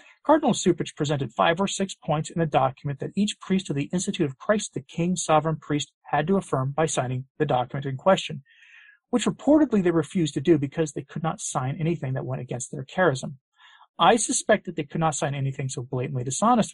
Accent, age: American, 40-59